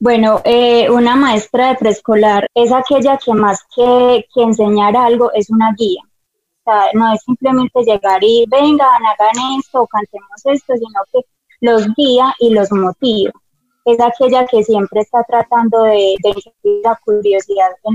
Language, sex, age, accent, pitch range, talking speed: Spanish, female, 20-39, Colombian, 210-250 Hz, 155 wpm